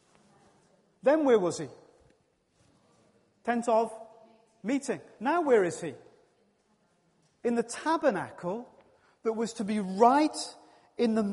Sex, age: male, 40-59